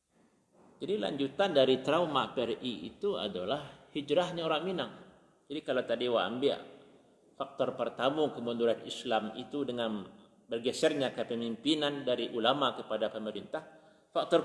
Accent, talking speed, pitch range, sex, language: native, 115 wpm, 125-175 Hz, male, Indonesian